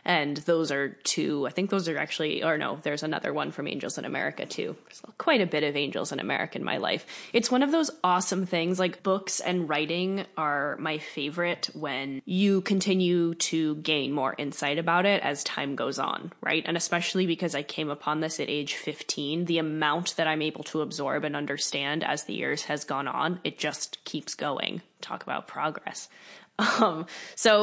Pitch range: 150-175 Hz